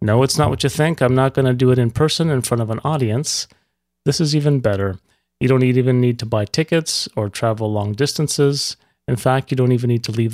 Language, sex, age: English, male, 30-49